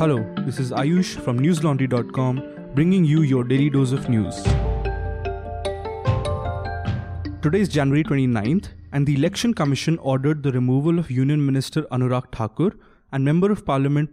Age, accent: 20-39, Indian